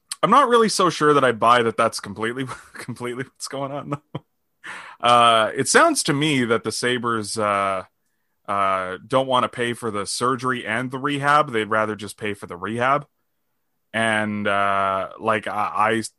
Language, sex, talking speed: English, male, 180 wpm